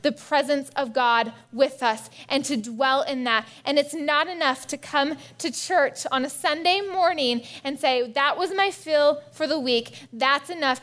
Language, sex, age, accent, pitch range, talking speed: English, female, 20-39, American, 245-290 Hz, 190 wpm